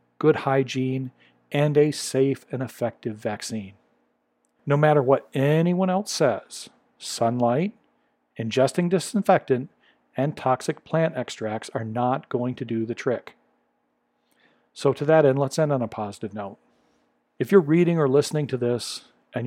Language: English